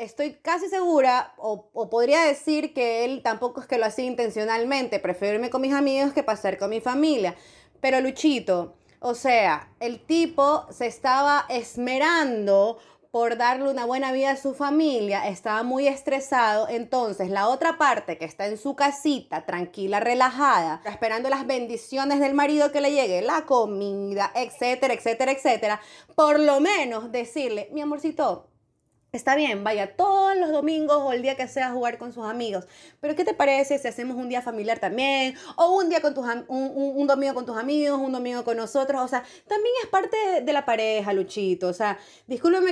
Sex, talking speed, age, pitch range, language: female, 185 wpm, 30-49, 235-295 Hz, Spanish